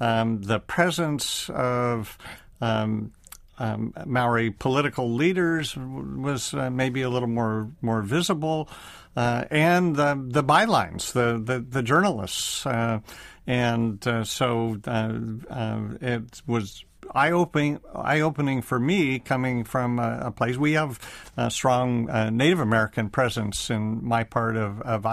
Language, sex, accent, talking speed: English, male, American, 140 wpm